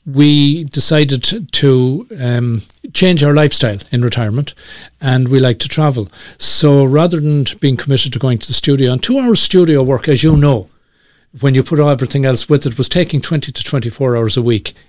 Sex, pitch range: male, 125-145 Hz